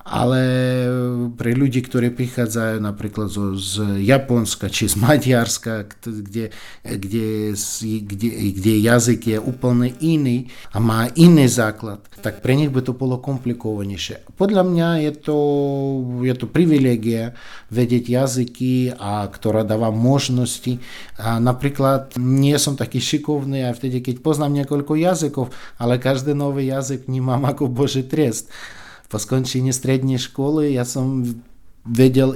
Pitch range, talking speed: 110-130 Hz, 120 wpm